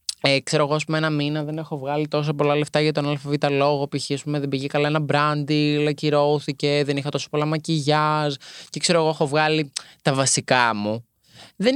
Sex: male